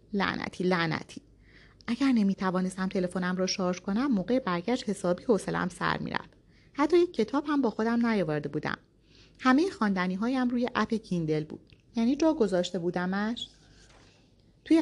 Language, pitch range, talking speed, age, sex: Persian, 170-230 Hz, 140 wpm, 30-49, female